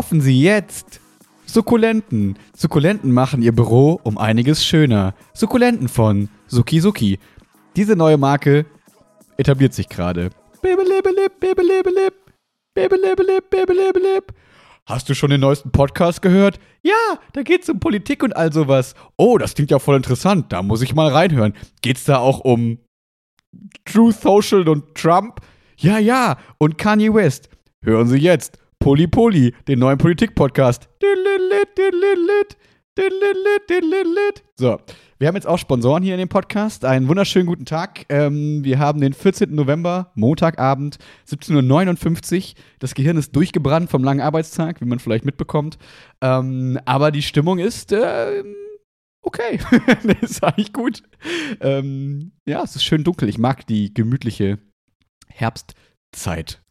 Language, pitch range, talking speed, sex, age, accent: German, 130-215 Hz, 130 wpm, male, 30-49, German